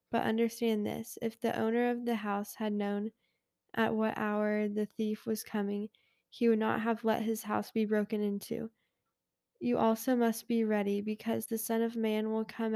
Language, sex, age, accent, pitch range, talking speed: English, female, 10-29, American, 210-230 Hz, 190 wpm